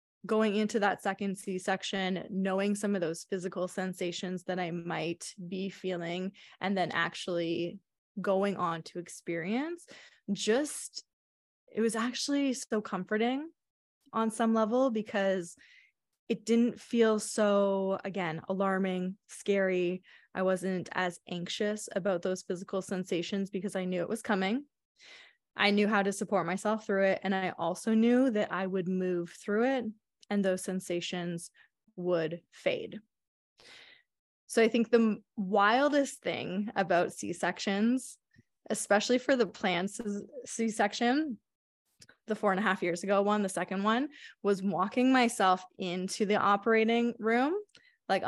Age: 20-39